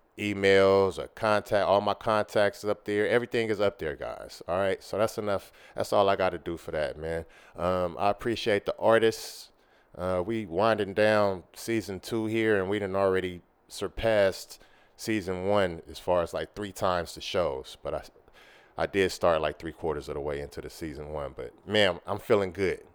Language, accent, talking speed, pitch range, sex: English, American, 195 wpm, 85-105 Hz, male